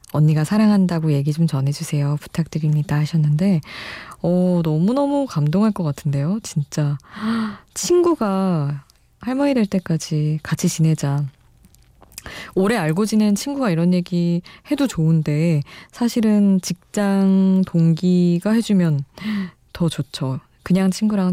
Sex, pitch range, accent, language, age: female, 150-205 Hz, native, Korean, 20-39